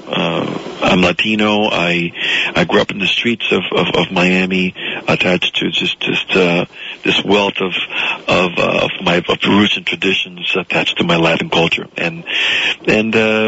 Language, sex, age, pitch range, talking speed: English, male, 50-69, 90-110 Hz, 160 wpm